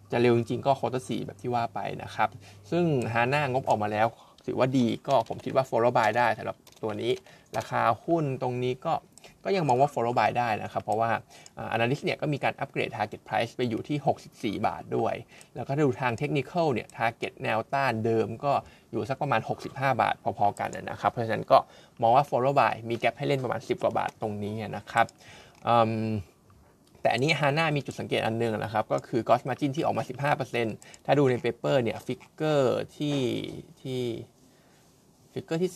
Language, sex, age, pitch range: Thai, male, 20-39, 115-140 Hz